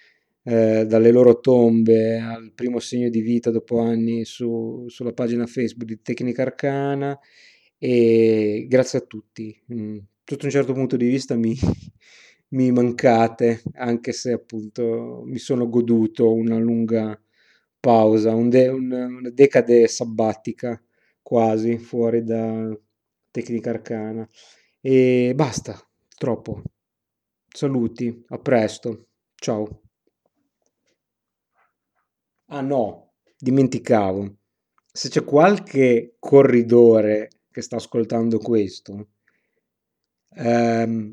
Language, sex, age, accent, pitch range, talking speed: Italian, male, 30-49, native, 110-125 Hz, 95 wpm